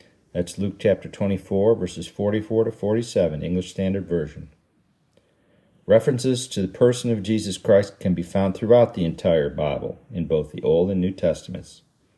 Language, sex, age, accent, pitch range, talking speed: English, male, 50-69, American, 90-115 Hz, 160 wpm